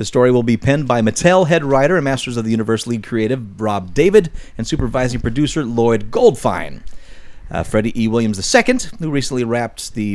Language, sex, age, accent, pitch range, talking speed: English, male, 30-49, American, 115-170 Hz, 190 wpm